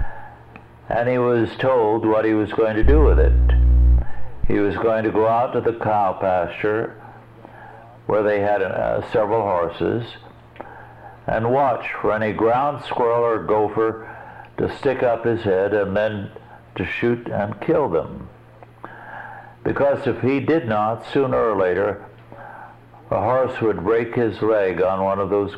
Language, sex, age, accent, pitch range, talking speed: English, male, 60-79, American, 100-120 Hz, 155 wpm